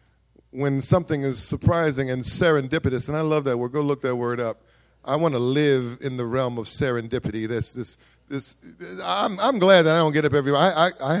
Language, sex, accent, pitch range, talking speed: English, male, American, 115-145 Hz, 220 wpm